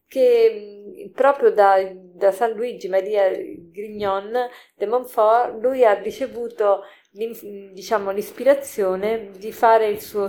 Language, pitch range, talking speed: Italian, 185-225 Hz, 110 wpm